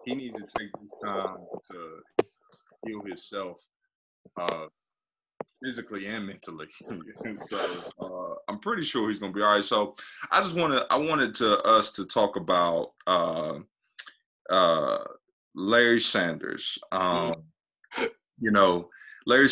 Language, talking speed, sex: English, 130 wpm, male